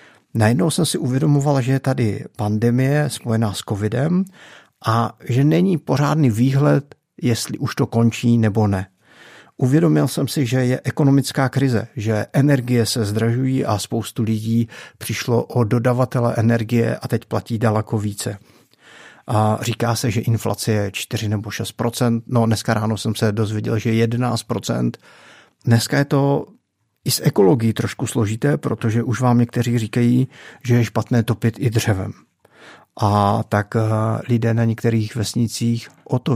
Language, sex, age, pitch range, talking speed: Czech, male, 50-69, 110-130 Hz, 145 wpm